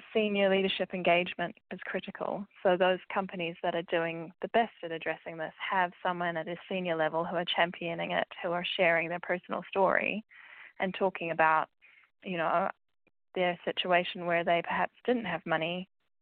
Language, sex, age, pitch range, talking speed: English, female, 10-29, 170-190 Hz, 165 wpm